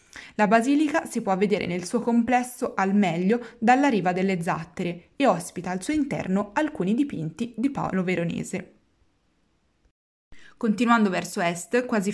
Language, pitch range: Italian, 185-235 Hz